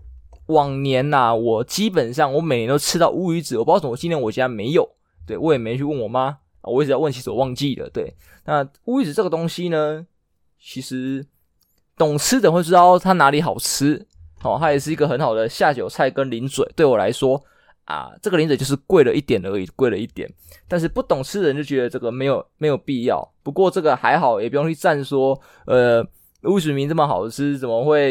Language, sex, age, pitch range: Chinese, male, 20-39, 125-160 Hz